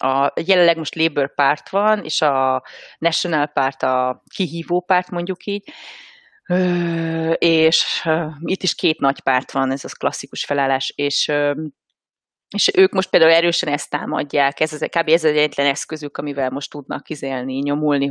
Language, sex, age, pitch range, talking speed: Hungarian, female, 30-49, 145-185 Hz, 150 wpm